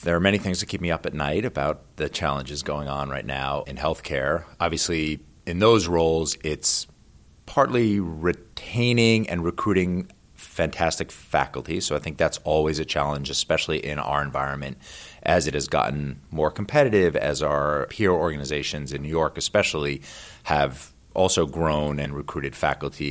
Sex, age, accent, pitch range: male, 30-49, American, 70-85 Hz